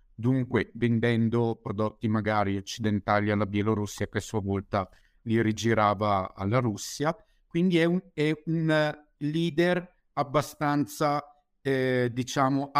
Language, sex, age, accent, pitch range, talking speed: Italian, male, 50-69, native, 110-140 Hz, 105 wpm